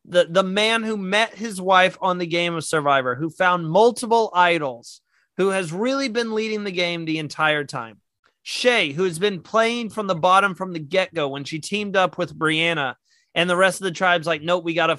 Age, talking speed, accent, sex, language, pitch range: 30-49, 215 wpm, American, male, English, 160-205 Hz